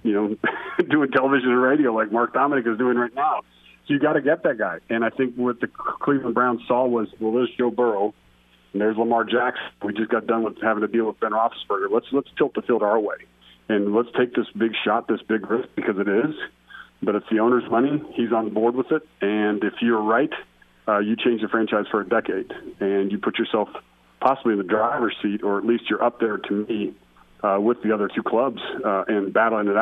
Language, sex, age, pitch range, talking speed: English, male, 40-59, 100-120 Hz, 235 wpm